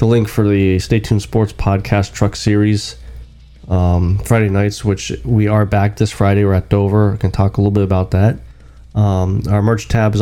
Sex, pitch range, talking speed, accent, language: male, 85-115 Hz, 205 wpm, American, English